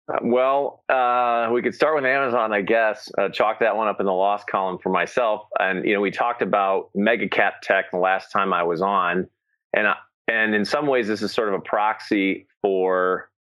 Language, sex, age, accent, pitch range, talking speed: English, male, 30-49, American, 95-120 Hz, 210 wpm